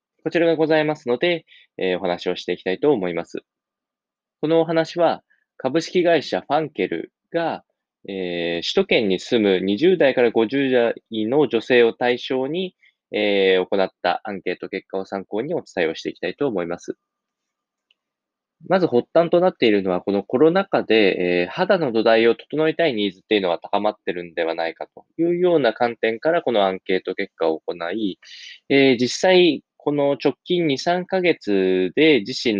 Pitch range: 95-150 Hz